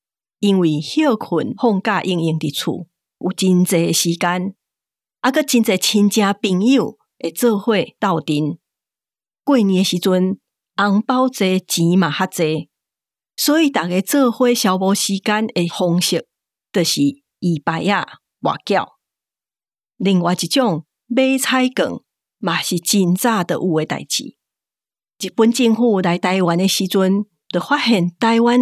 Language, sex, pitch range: Chinese, female, 175-230 Hz